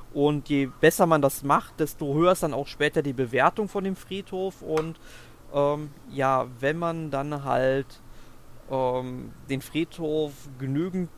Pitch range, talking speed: 140-175 Hz, 150 wpm